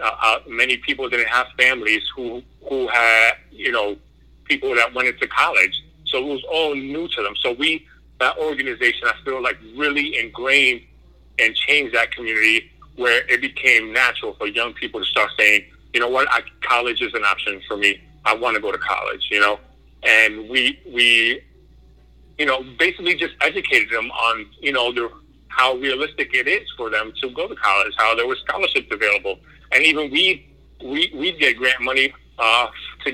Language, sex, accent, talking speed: English, male, American, 185 wpm